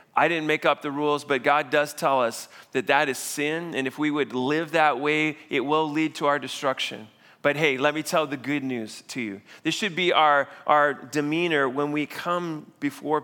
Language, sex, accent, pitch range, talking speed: English, male, American, 130-160 Hz, 220 wpm